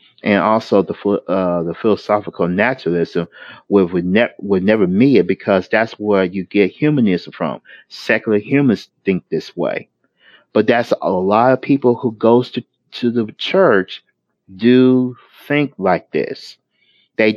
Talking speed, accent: 140 wpm, American